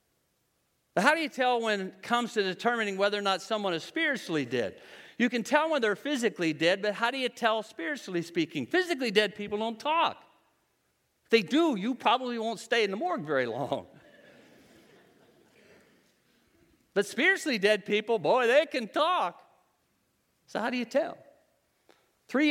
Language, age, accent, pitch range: English, 50-69, American, 155-230 Hz